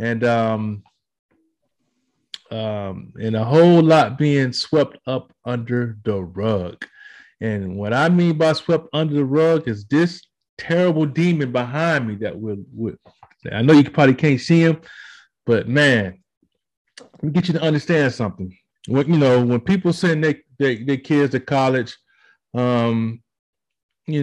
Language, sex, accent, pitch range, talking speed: English, male, American, 125-160 Hz, 150 wpm